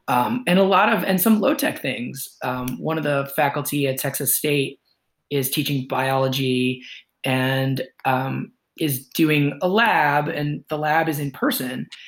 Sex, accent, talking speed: male, American, 165 wpm